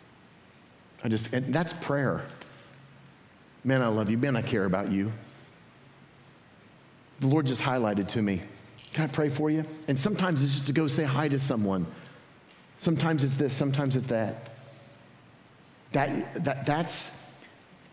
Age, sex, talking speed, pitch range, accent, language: 40-59, male, 145 wpm, 105-130 Hz, American, English